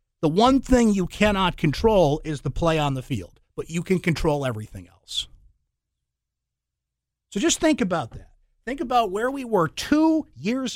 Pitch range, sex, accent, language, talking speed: 125-210 Hz, male, American, English, 165 wpm